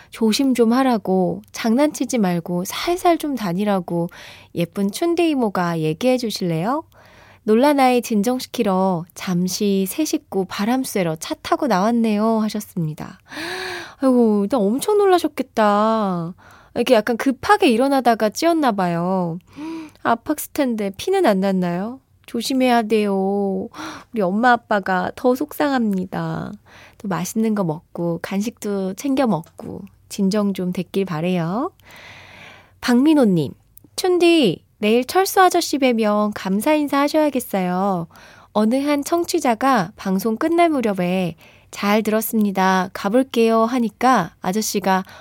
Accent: native